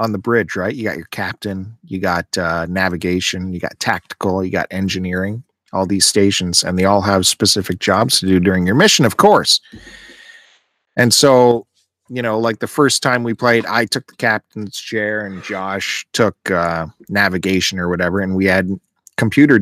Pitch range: 95-115 Hz